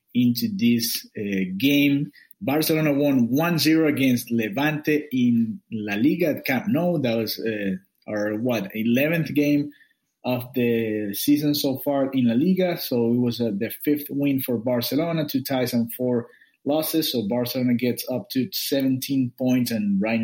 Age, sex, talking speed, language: 30-49, male, 155 wpm, English